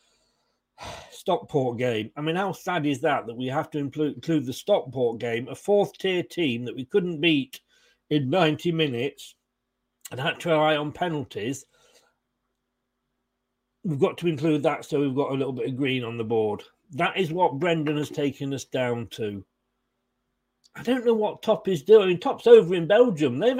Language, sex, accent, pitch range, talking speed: English, male, British, 140-190 Hz, 185 wpm